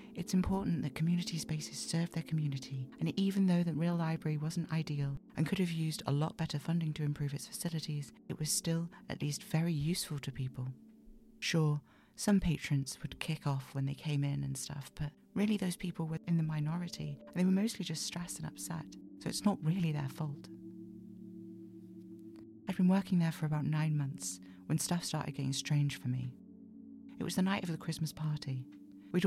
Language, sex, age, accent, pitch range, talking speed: English, female, 40-59, British, 140-170 Hz, 195 wpm